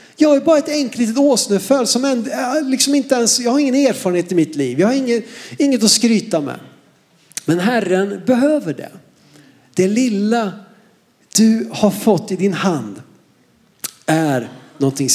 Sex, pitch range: male, 210-270 Hz